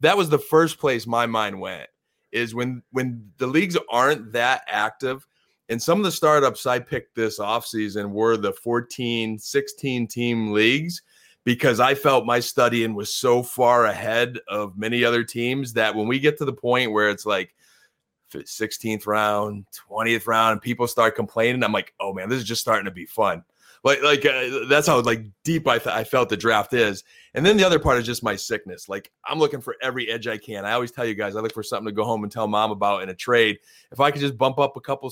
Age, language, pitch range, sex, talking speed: 30-49, English, 110-135 Hz, male, 220 wpm